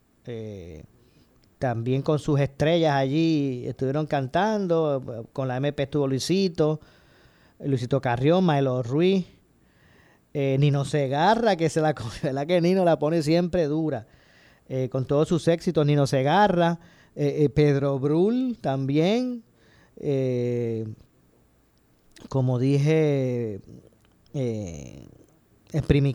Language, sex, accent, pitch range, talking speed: Spanish, male, American, 125-155 Hz, 110 wpm